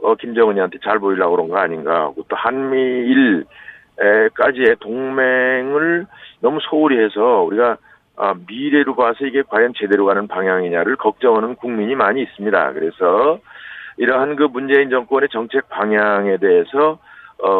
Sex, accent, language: male, native, Korean